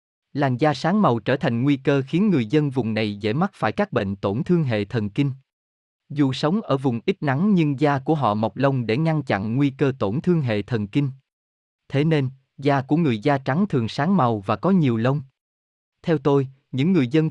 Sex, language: male, Vietnamese